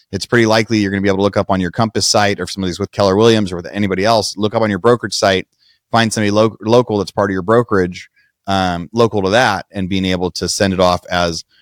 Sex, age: male, 30-49